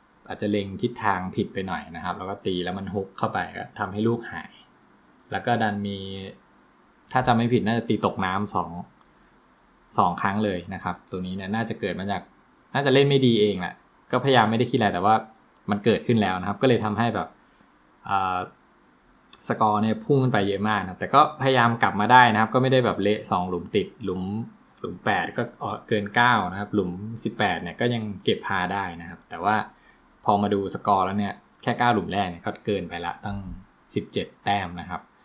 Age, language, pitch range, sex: 20-39, English, 95-115 Hz, male